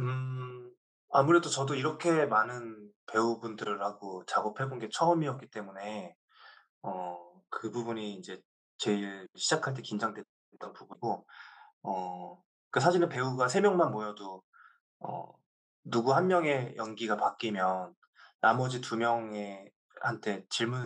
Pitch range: 100-135 Hz